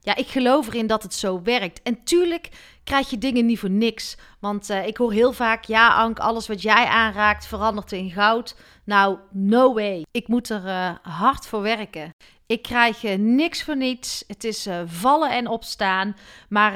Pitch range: 200-260 Hz